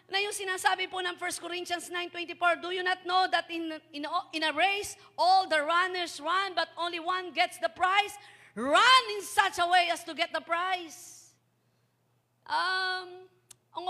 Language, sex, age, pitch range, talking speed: Filipino, female, 40-59, 270-360 Hz, 170 wpm